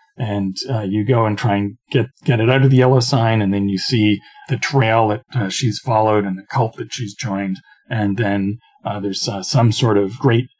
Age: 40-59